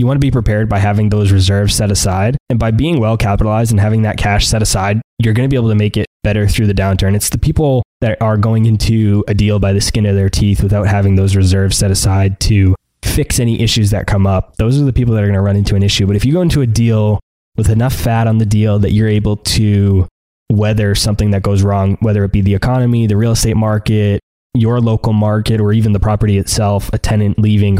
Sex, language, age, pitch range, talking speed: male, English, 20-39, 100-115 Hz, 250 wpm